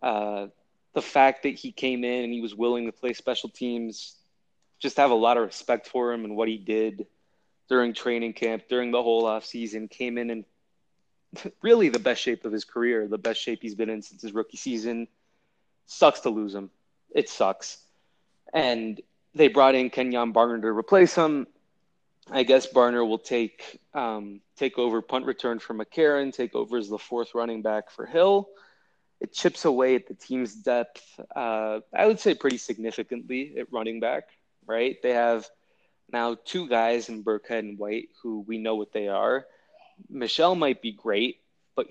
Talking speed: 185 wpm